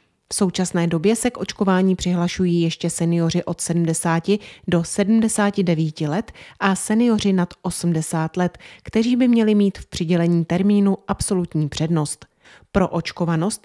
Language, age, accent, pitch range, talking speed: Czech, 30-49, native, 170-215 Hz, 130 wpm